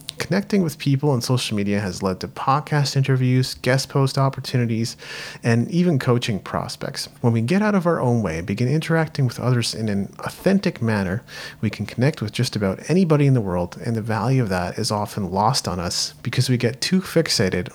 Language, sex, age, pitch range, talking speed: English, male, 30-49, 105-145 Hz, 205 wpm